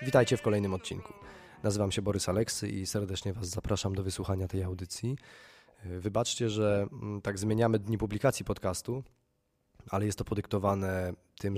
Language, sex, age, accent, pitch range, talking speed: Polish, male, 20-39, native, 105-125 Hz, 145 wpm